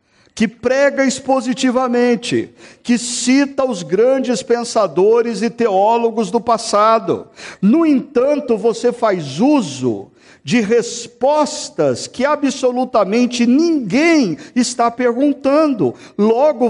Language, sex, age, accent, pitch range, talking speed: Portuguese, male, 50-69, Brazilian, 195-255 Hz, 90 wpm